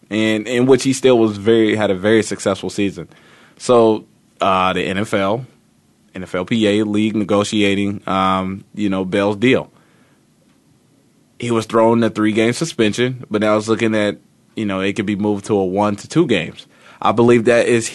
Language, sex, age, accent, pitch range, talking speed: English, male, 20-39, American, 100-115 Hz, 175 wpm